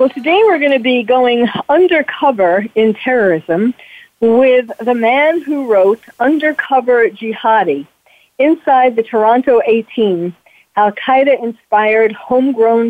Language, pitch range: English, 195-255 Hz